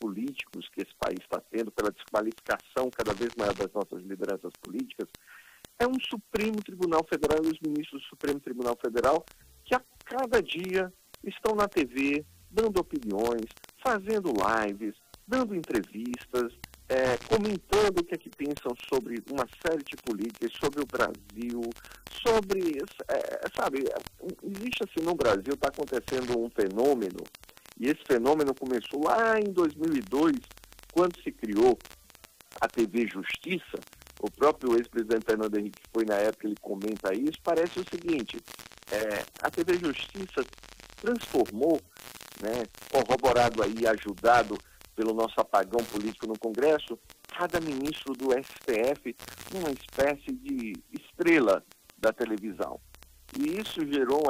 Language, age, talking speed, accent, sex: Portuguese, 50-69, 135 wpm, Brazilian, male